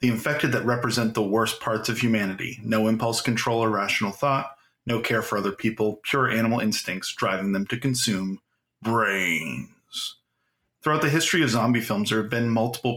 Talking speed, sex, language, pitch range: 175 wpm, male, English, 110-135 Hz